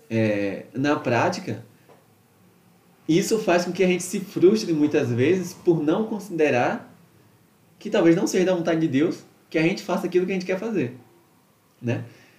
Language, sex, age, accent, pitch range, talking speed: Portuguese, male, 20-39, Brazilian, 125-180 Hz, 165 wpm